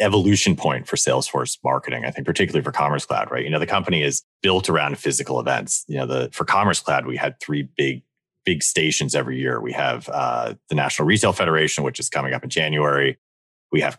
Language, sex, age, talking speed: English, male, 30-49, 215 wpm